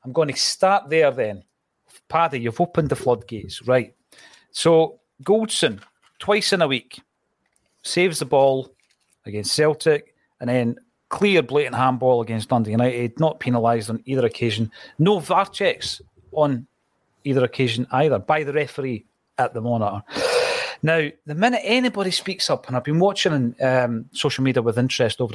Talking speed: 155 wpm